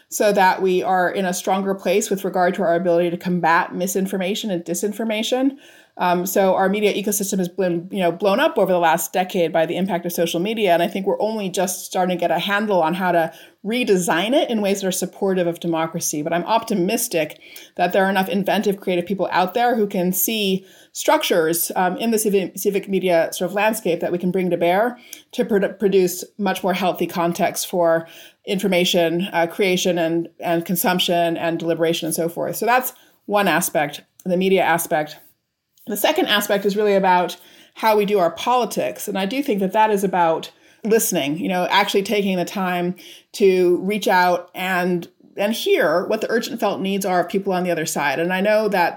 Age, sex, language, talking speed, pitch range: 30-49, female, English, 205 wpm, 175-210 Hz